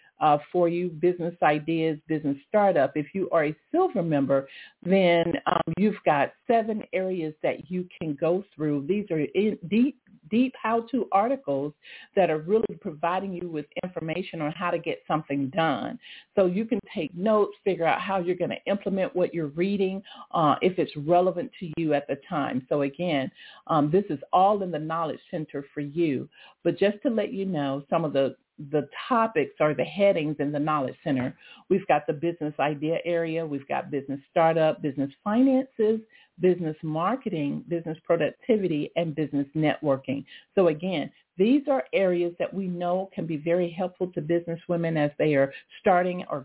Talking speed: 175 wpm